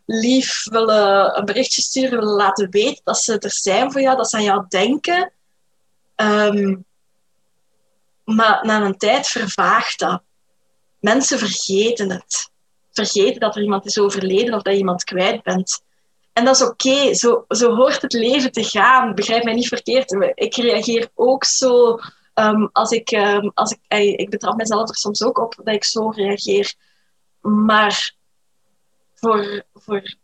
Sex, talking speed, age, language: female, 165 wpm, 20-39, Dutch